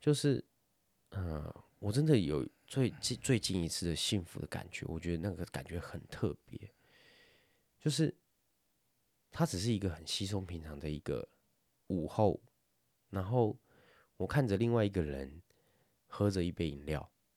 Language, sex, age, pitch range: Chinese, male, 30-49, 85-115 Hz